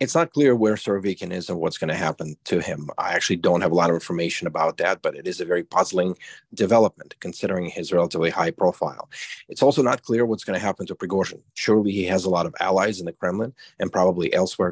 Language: English